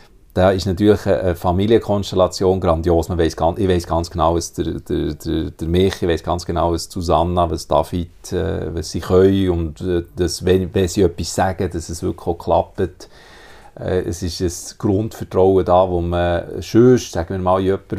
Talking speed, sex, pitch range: 190 wpm, male, 85-100 Hz